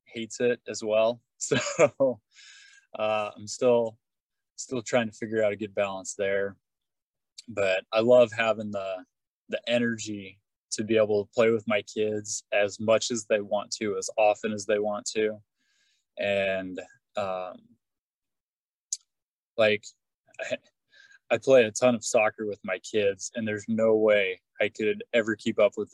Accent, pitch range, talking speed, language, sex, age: American, 105-125 Hz, 155 wpm, English, male, 20-39